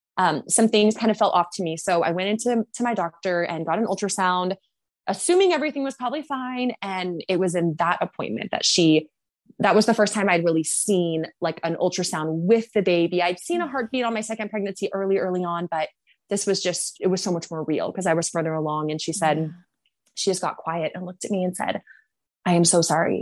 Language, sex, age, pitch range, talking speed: English, female, 20-39, 170-215 Hz, 235 wpm